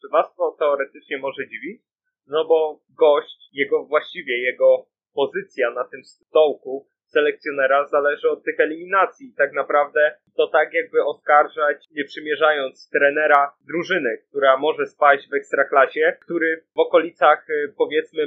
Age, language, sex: 20-39, Polish, male